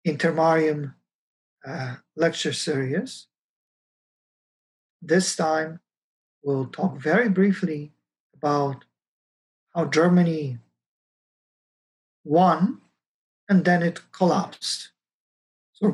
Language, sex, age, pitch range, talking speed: English, male, 50-69, 145-190 Hz, 70 wpm